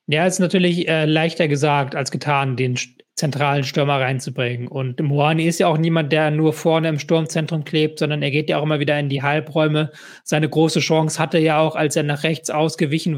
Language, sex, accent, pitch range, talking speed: German, male, German, 140-160 Hz, 205 wpm